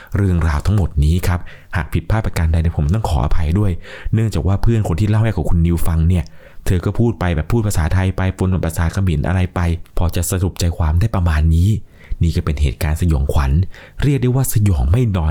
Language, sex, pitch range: Thai, male, 75-100 Hz